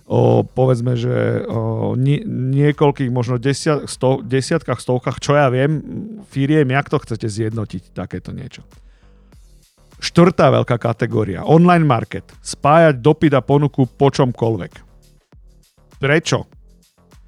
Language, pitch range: Slovak, 120-150 Hz